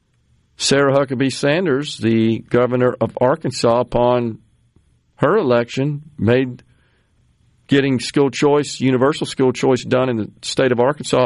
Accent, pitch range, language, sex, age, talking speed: American, 120-150 Hz, English, male, 50-69, 125 wpm